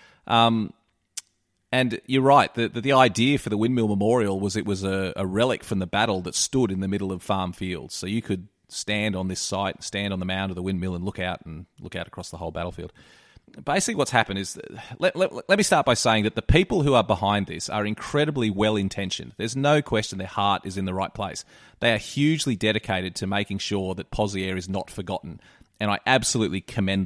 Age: 30-49